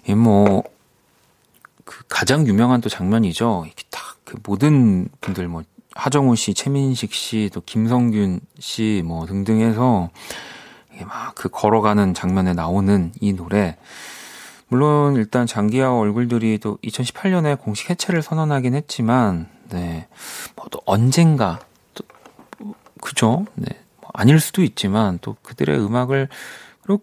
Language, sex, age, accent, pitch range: Korean, male, 40-59, native, 100-150 Hz